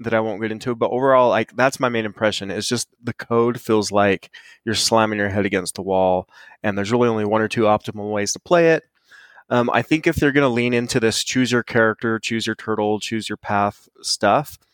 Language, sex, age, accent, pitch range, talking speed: English, male, 20-39, American, 105-125 Hz, 230 wpm